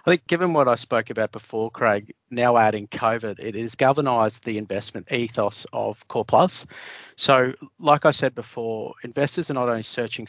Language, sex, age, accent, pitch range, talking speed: English, male, 40-59, Australian, 110-130 Hz, 180 wpm